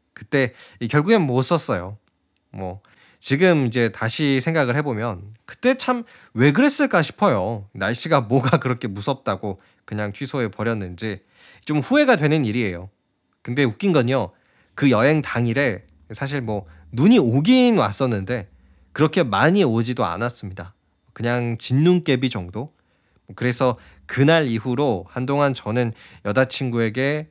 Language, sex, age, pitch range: Korean, male, 20-39, 105-150 Hz